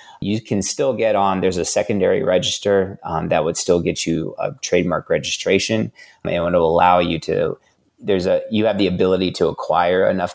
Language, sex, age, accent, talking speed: English, male, 30-49, American, 190 wpm